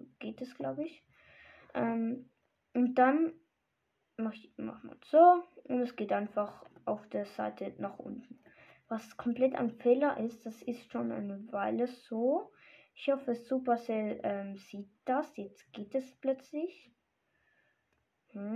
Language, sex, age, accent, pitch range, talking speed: German, female, 10-29, German, 225-280 Hz, 140 wpm